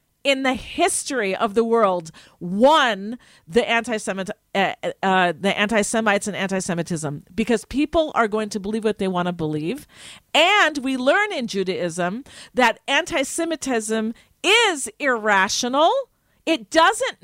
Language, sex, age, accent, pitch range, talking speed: English, female, 50-69, American, 200-265 Hz, 130 wpm